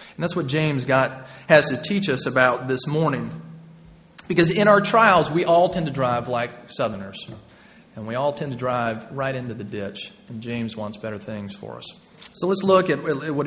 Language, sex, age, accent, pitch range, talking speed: English, male, 40-59, American, 130-180 Hz, 205 wpm